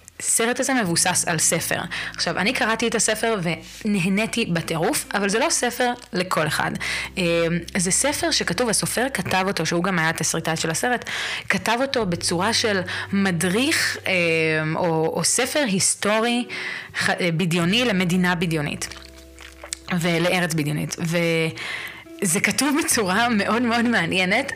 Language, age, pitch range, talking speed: Hebrew, 20-39, 170-215 Hz, 120 wpm